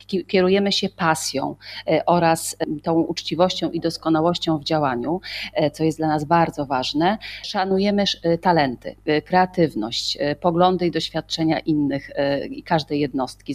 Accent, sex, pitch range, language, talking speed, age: native, female, 145-180 Hz, Polish, 115 wpm, 30-49